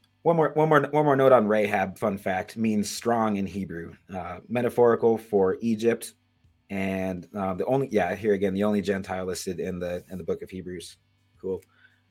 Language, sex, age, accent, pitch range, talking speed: English, male, 30-49, American, 100-140 Hz, 190 wpm